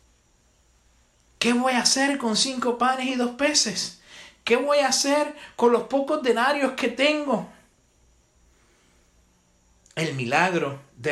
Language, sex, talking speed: Spanish, male, 125 wpm